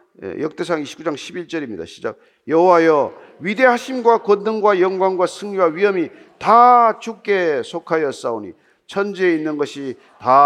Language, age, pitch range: Korean, 40-59, 175-275 Hz